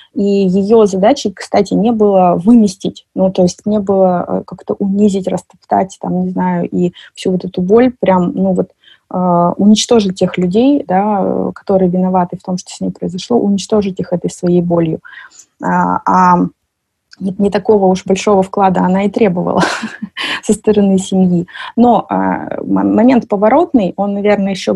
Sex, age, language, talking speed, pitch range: female, 20-39, Russian, 155 wpm, 185-225 Hz